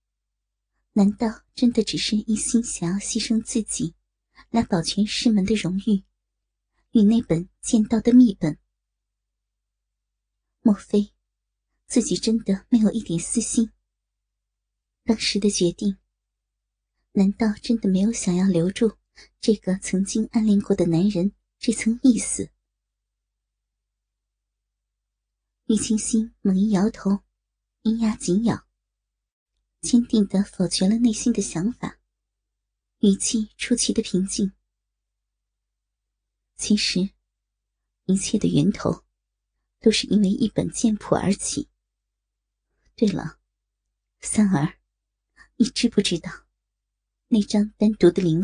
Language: Chinese